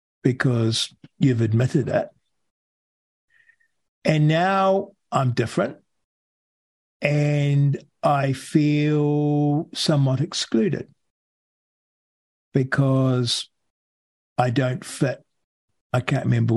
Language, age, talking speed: English, 50-69, 70 wpm